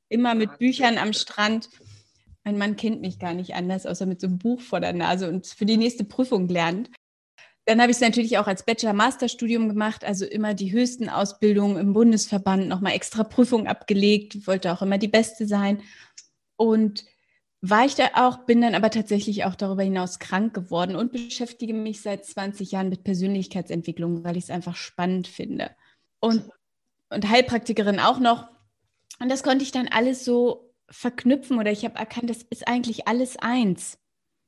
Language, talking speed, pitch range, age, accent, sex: German, 180 wpm, 200-235 Hz, 30-49, German, female